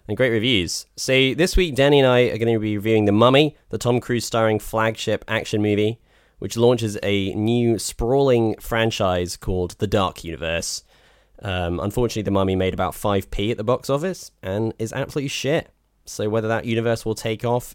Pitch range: 100-145 Hz